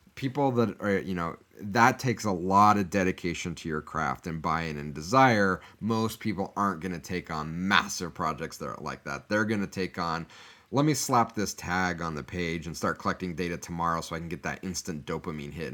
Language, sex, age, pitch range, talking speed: English, male, 30-49, 85-110 Hz, 215 wpm